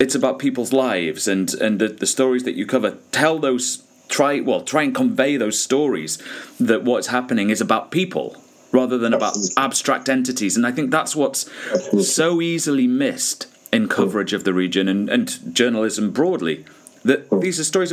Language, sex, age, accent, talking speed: English, male, 30-49, British, 175 wpm